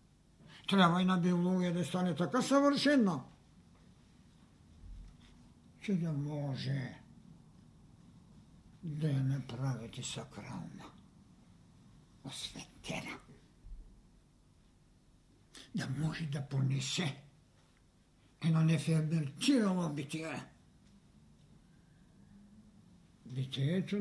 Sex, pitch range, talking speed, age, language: male, 145-230 Hz, 55 wpm, 60-79, Bulgarian